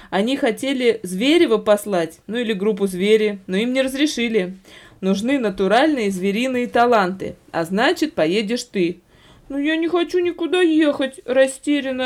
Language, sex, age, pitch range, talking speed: Russian, female, 20-39, 195-275 Hz, 135 wpm